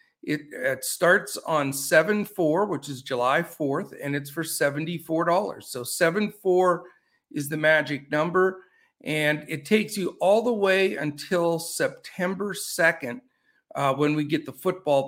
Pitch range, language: 145-185 Hz, English